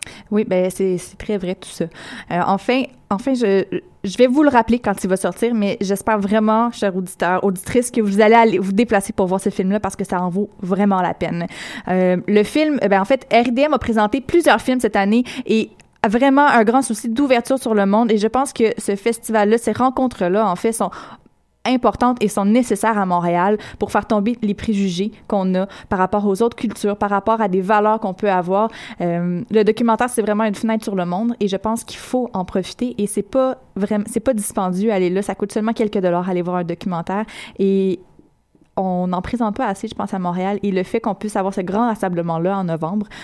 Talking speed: 225 wpm